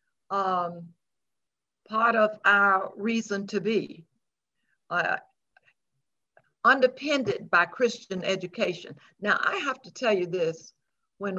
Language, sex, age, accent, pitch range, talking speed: English, female, 60-79, American, 180-215 Hz, 100 wpm